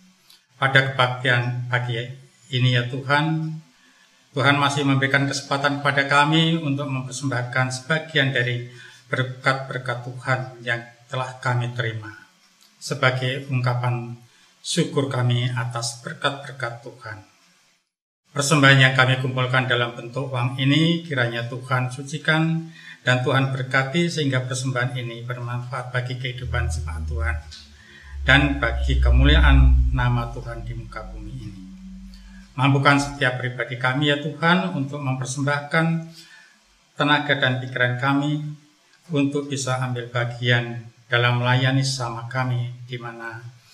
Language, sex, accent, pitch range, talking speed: Indonesian, male, native, 120-140 Hz, 115 wpm